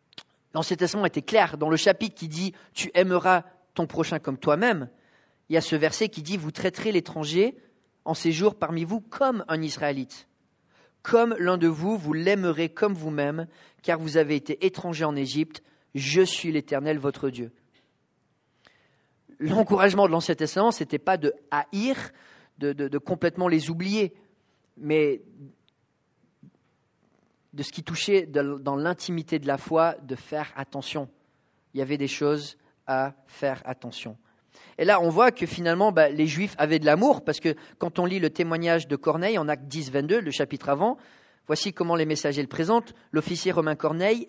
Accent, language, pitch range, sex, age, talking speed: French, English, 145-185 Hz, male, 40-59, 170 wpm